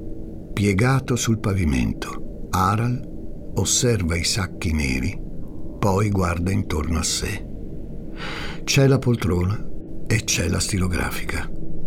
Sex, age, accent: male, 60-79, native